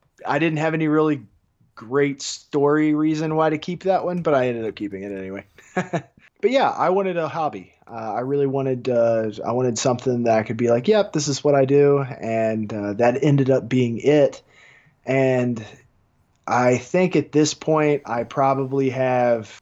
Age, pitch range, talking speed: 20-39, 115-145 Hz, 185 wpm